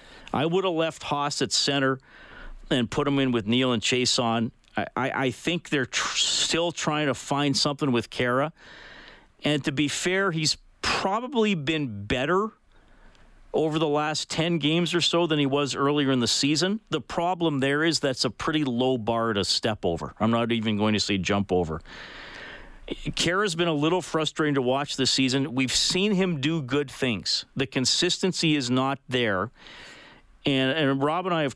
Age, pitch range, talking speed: 40-59, 115-155 Hz, 185 wpm